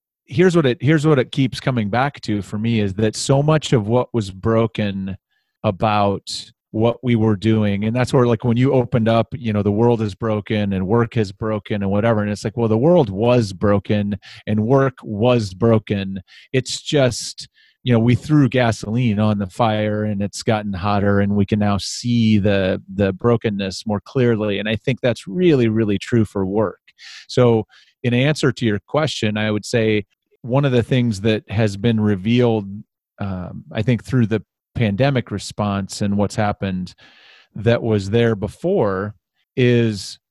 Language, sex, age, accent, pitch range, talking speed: English, male, 30-49, American, 105-125 Hz, 180 wpm